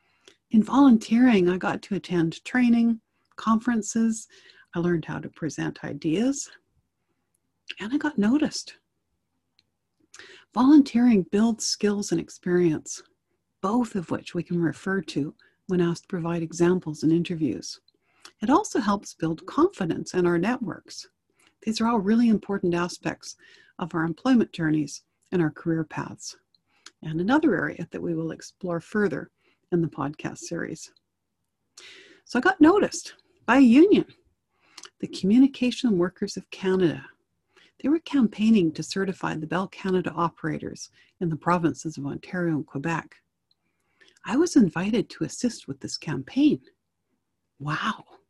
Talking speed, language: 135 wpm, English